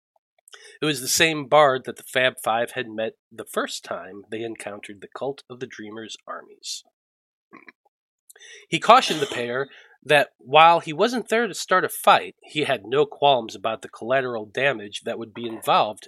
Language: English